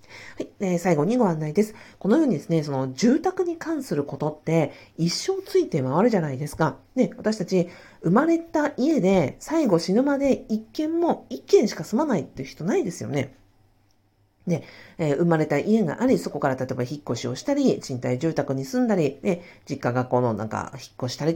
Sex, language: female, Japanese